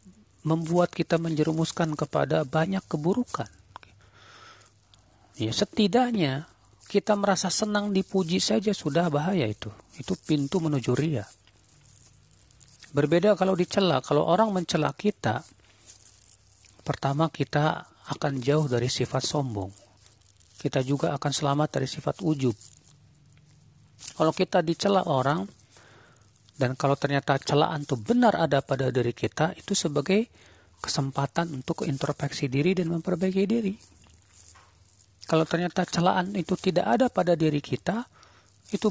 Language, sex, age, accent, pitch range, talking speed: Indonesian, male, 40-59, native, 110-165 Hz, 115 wpm